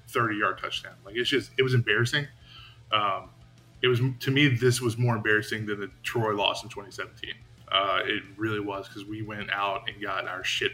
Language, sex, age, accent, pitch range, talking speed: English, male, 20-39, American, 105-125 Hz, 195 wpm